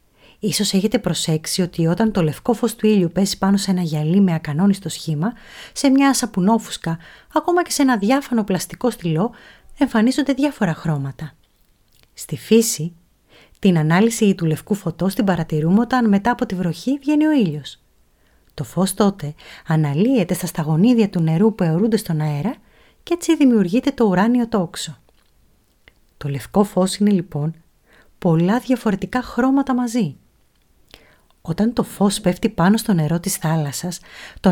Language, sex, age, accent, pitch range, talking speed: Greek, female, 30-49, native, 165-230 Hz, 150 wpm